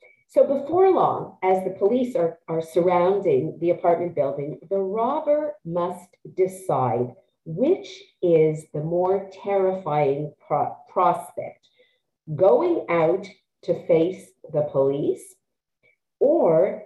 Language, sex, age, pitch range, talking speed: English, female, 50-69, 175-275 Hz, 105 wpm